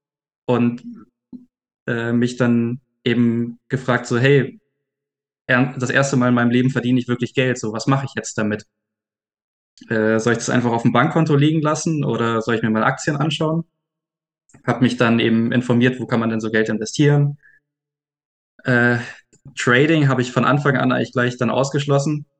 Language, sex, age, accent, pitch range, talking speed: German, male, 20-39, German, 115-135 Hz, 170 wpm